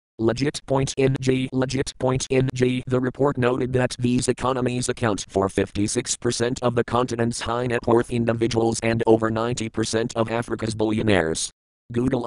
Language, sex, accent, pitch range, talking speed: English, male, American, 110-125 Hz, 120 wpm